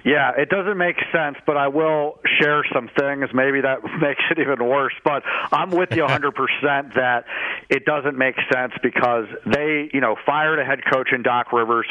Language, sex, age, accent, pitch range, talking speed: English, male, 50-69, American, 125-145 Hz, 190 wpm